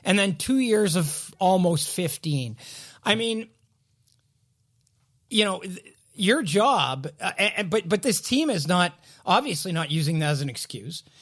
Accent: American